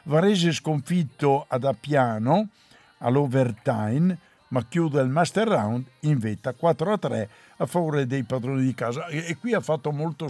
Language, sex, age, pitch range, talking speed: Italian, male, 60-79, 125-165 Hz, 145 wpm